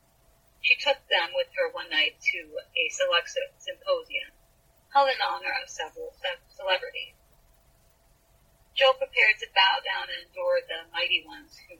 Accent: American